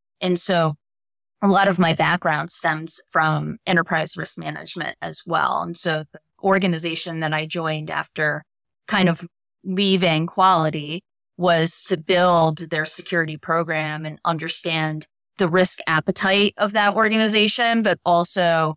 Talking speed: 135 wpm